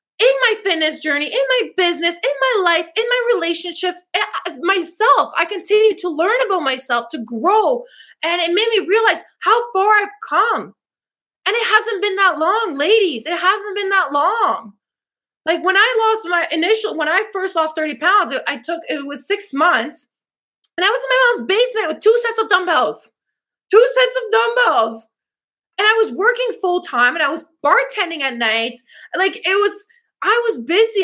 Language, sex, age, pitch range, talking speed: English, female, 20-39, 320-425 Hz, 185 wpm